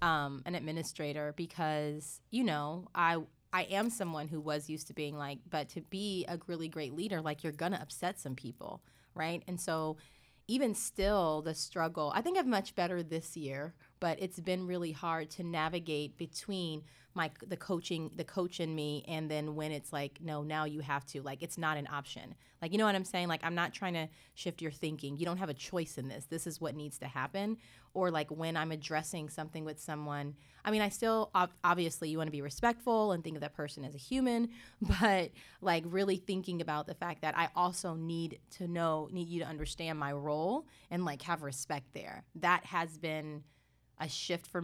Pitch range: 150-180 Hz